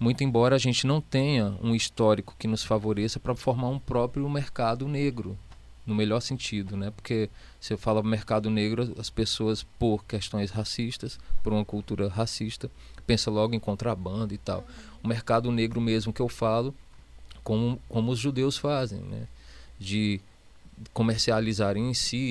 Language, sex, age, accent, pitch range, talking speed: Portuguese, male, 20-39, Brazilian, 105-125 Hz, 160 wpm